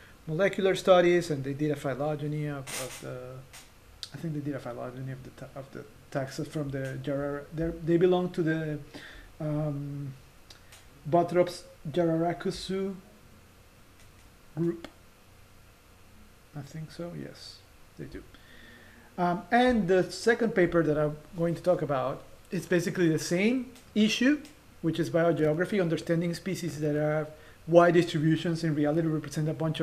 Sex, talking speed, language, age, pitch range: male, 140 wpm, English, 40-59, 140-175 Hz